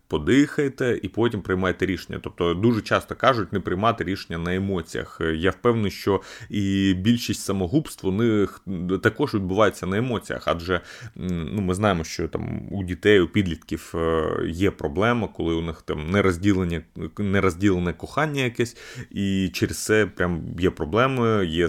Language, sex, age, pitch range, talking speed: Ukrainian, male, 30-49, 90-115 Hz, 140 wpm